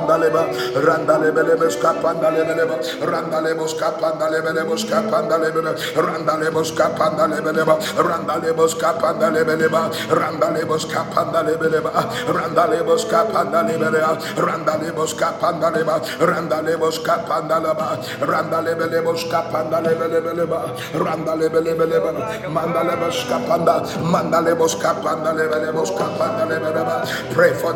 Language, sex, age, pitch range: English, male, 60-79, 160-170 Hz